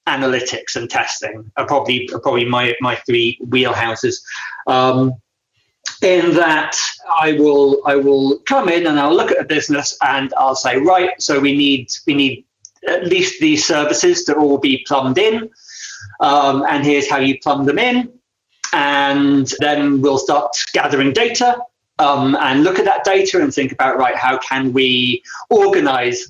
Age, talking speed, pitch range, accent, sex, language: 30-49, 160 wpm, 135-190 Hz, British, male, English